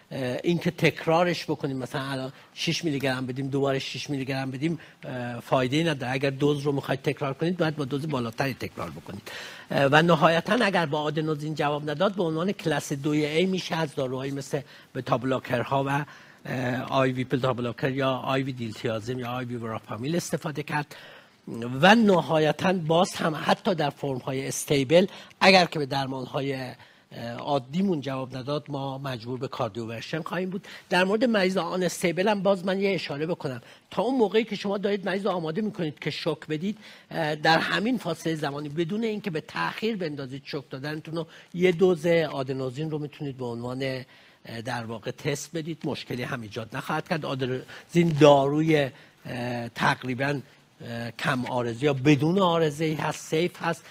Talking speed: 160 wpm